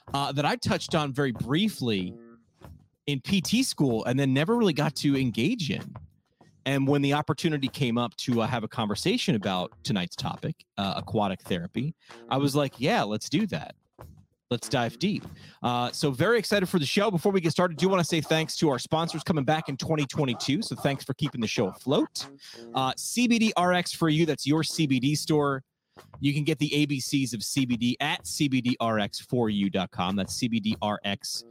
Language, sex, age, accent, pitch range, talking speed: English, male, 30-49, American, 110-150 Hz, 180 wpm